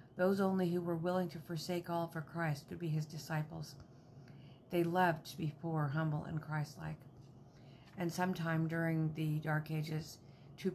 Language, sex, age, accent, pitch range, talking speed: English, female, 50-69, American, 145-170 Hz, 160 wpm